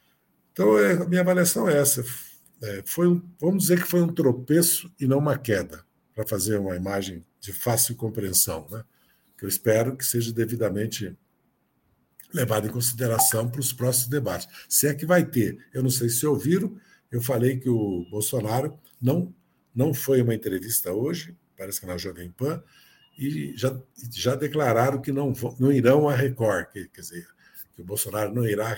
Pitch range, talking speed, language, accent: 105-140 Hz, 165 wpm, Portuguese, Brazilian